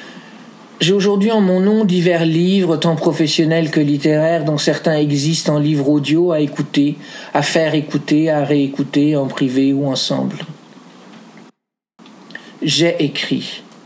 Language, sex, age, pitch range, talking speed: French, male, 50-69, 140-170 Hz, 130 wpm